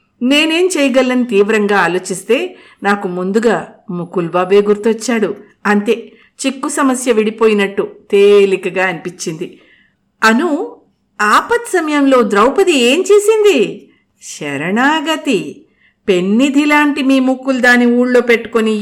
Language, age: Telugu, 50-69